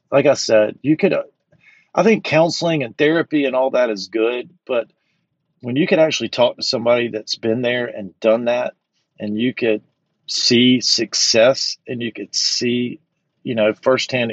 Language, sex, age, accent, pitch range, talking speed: English, male, 40-59, American, 110-130 Hz, 175 wpm